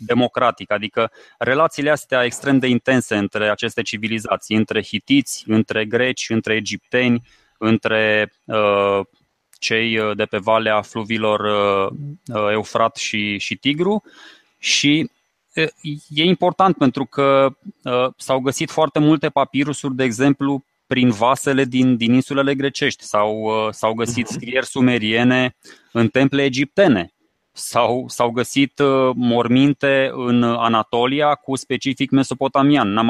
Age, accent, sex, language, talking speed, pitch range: 20-39, native, male, Romanian, 110 wpm, 115-140 Hz